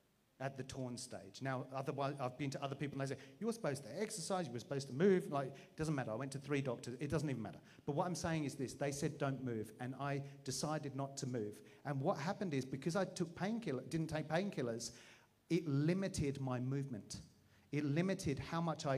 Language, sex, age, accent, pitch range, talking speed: English, male, 40-59, British, 130-155 Hz, 230 wpm